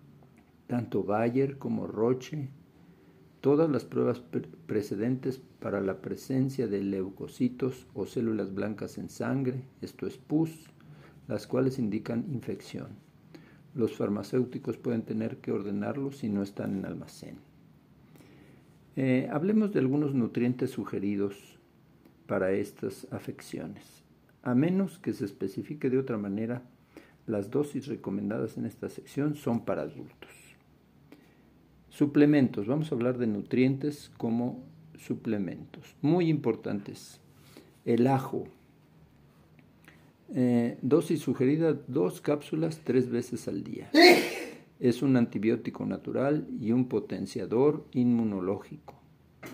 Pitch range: 115-145 Hz